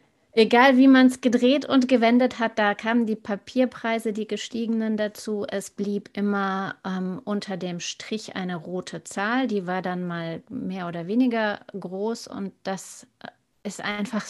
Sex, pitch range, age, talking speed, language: female, 185-220 Hz, 30-49, 155 wpm, German